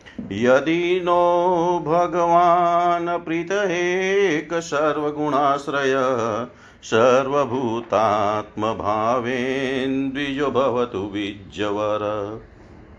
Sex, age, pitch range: male, 50-69, 110-150 Hz